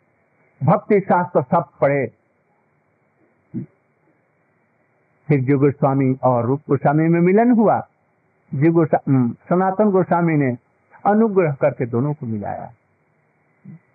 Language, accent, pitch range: Hindi, native, 145-215 Hz